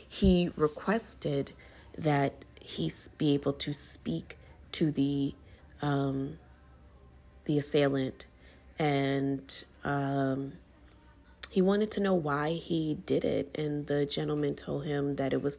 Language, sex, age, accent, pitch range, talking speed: English, female, 30-49, American, 135-165 Hz, 120 wpm